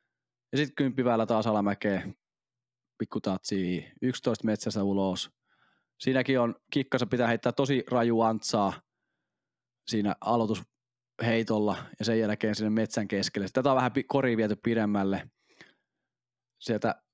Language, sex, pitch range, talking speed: Finnish, male, 105-125 Hz, 110 wpm